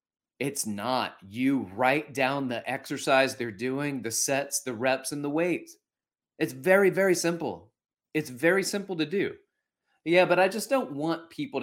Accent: American